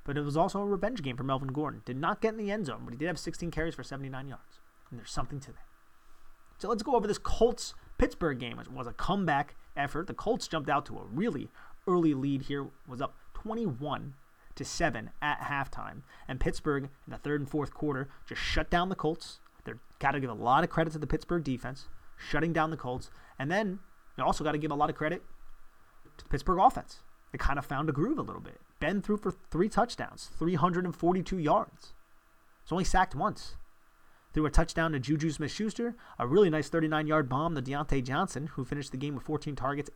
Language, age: English, 30-49